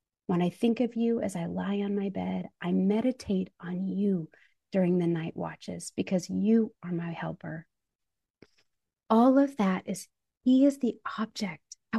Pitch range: 195-240 Hz